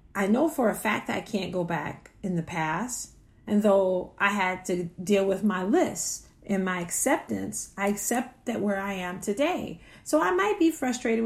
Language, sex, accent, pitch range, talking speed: English, female, American, 175-245 Hz, 195 wpm